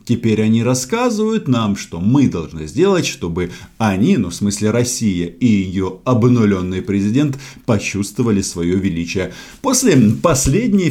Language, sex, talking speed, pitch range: Russian, male, 125 wpm, 90-140 Hz